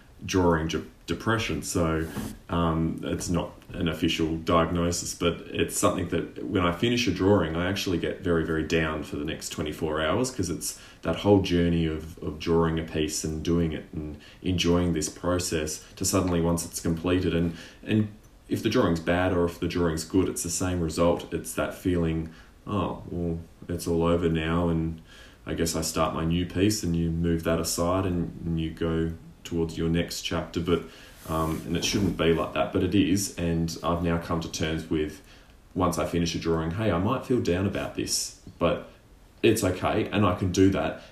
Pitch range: 80-90 Hz